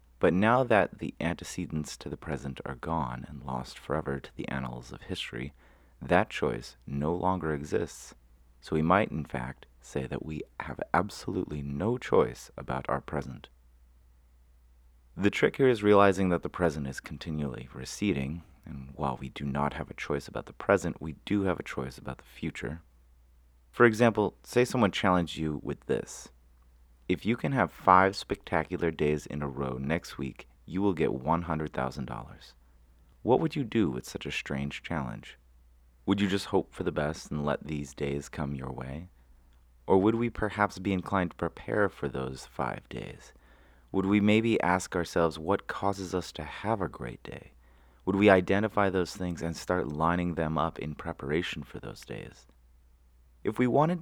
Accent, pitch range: American, 65-90 Hz